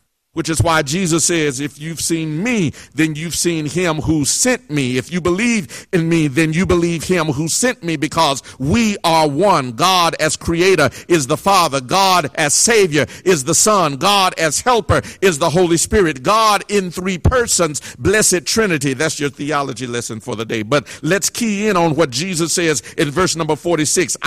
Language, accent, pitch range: English, American, 155-195 Hz